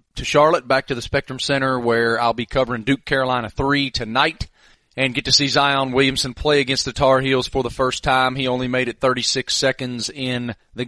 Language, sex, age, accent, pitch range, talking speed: English, male, 30-49, American, 120-140 Hz, 210 wpm